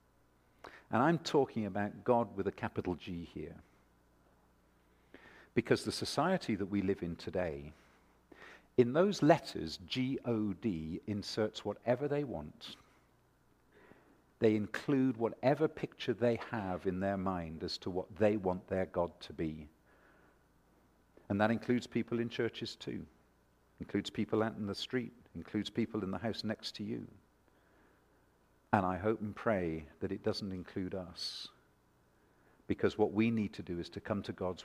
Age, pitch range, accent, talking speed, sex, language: 50-69, 80-115 Hz, British, 150 wpm, male, English